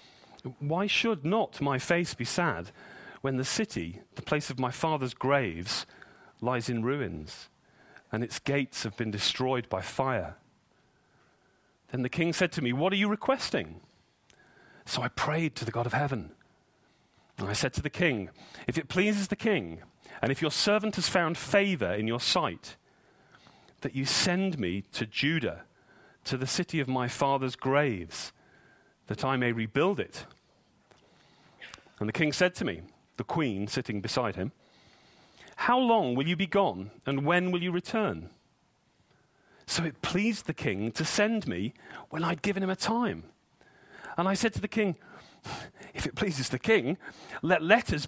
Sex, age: male, 40-59